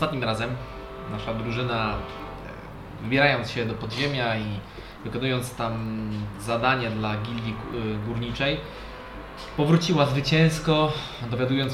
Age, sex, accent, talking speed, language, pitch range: 20-39, male, native, 90 wpm, Polish, 110-130 Hz